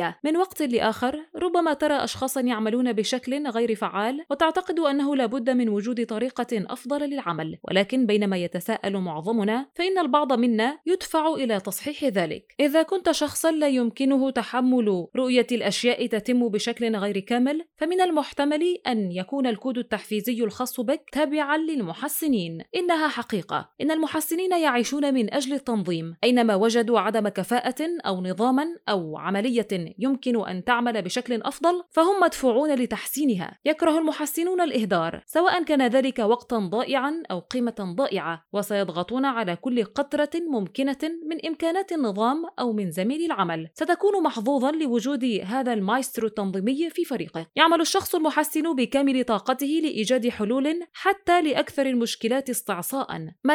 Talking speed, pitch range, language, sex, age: 135 wpm, 225-305 Hz, Arabic, female, 20-39